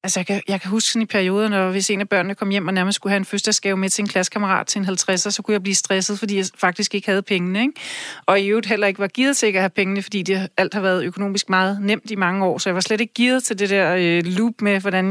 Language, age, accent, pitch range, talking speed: Danish, 30-49, native, 195-220 Hz, 295 wpm